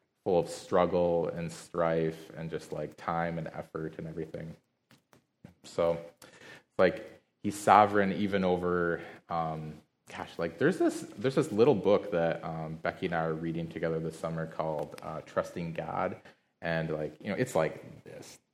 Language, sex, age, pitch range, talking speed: English, male, 20-39, 80-90 Hz, 160 wpm